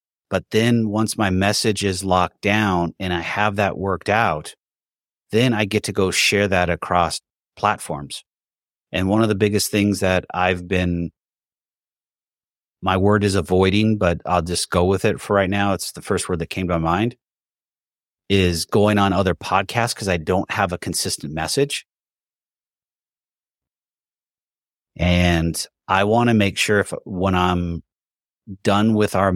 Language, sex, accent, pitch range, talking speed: English, male, American, 85-100 Hz, 160 wpm